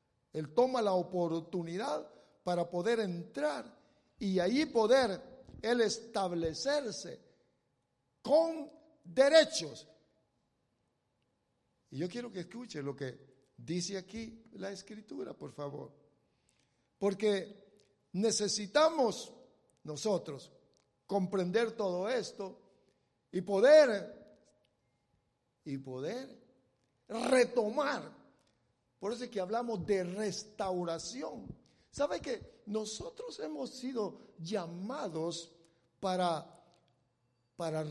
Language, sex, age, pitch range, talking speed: English, male, 60-79, 165-240 Hz, 85 wpm